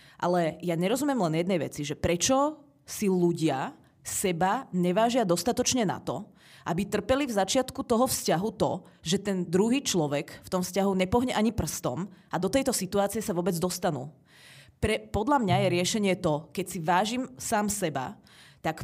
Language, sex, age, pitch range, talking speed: Czech, female, 30-49, 170-215 Hz, 160 wpm